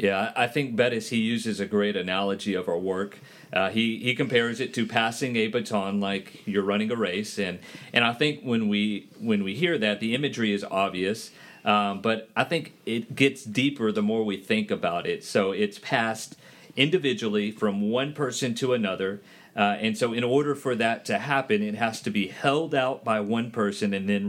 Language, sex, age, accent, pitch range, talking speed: English, male, 40-59, American, 105-135 Hz, 205 wpm